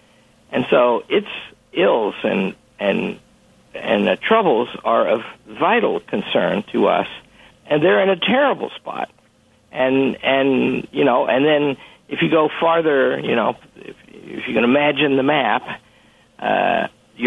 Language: English